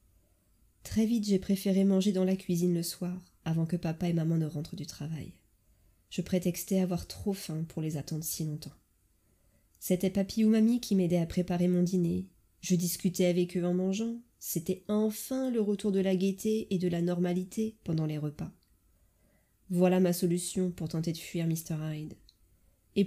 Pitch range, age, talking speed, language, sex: 140-180 Hz, 20-39, 180 wpm, French, female